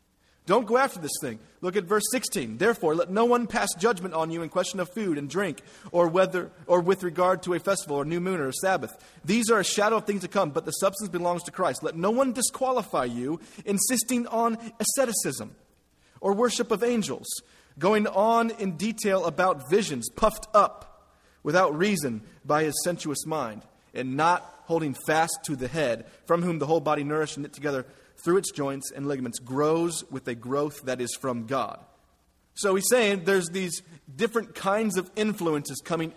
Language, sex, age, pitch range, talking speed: English, male, 30-49, 140-205 Hz, 190 wpm